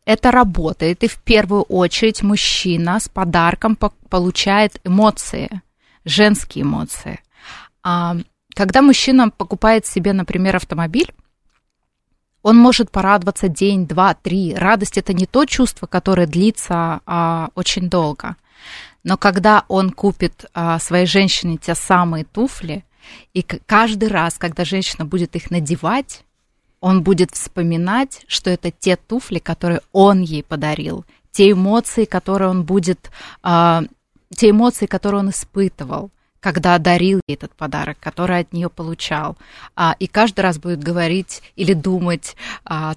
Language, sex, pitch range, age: Russian, female, 170-205 Hz, 20-39